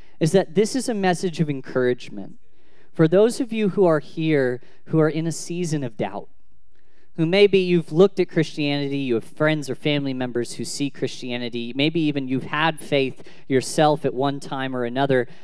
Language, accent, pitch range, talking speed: English, American, 140-180 Hz, 185 wpm